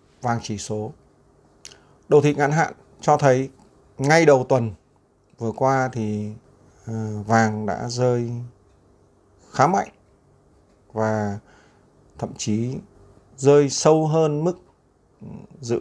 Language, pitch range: Vietnamese, 100-130 Hz